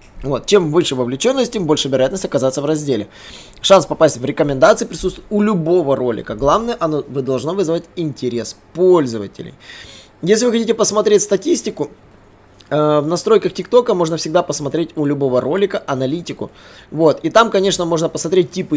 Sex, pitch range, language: male, 125-180 Hz, Russian